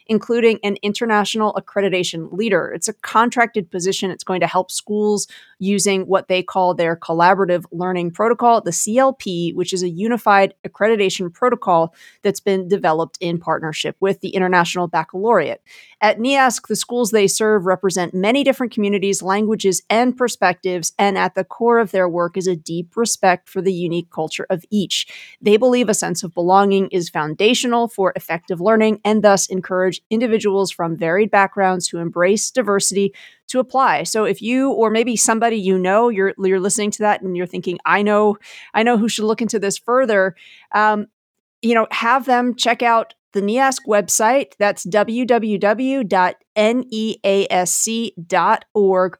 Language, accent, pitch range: English, American, 185-220 Hz